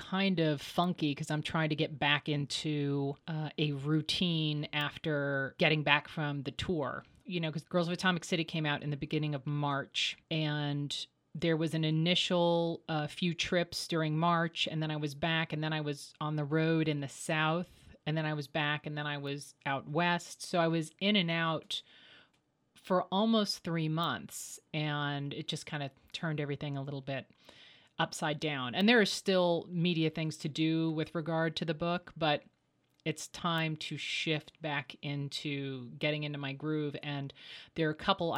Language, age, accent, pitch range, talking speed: English, 30-49, American, 145-165 Hz, 190 wpm